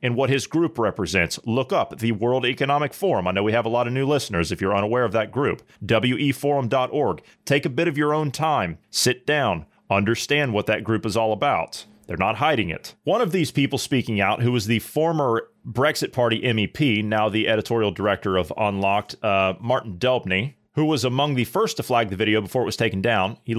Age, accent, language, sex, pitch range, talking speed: 30-49, American, English, male, 105-135 Hz, 215 wpm